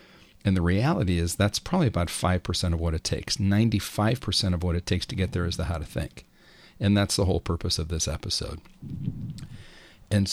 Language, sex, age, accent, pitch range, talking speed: English, male, 40-59, American, 90-100 Hz, 200 wpm